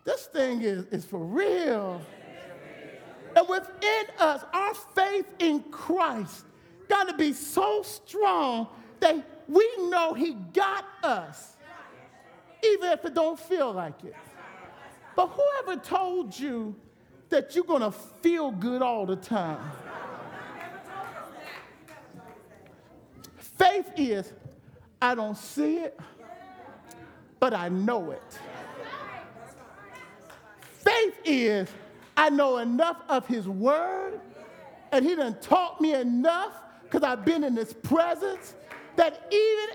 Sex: male